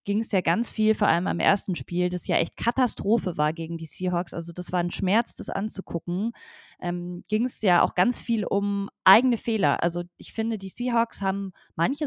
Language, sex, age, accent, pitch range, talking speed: German, female, 20-39, German, 190-230 Hz, 210 wpm